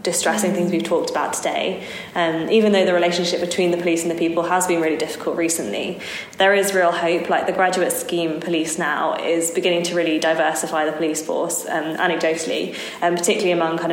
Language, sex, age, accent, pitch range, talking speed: English, female, 20-39, British, 165-180 Hz, 200 wpm